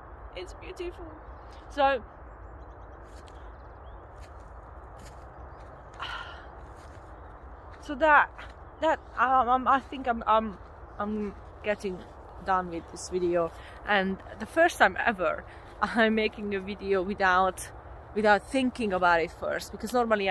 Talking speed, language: 105 wpm, English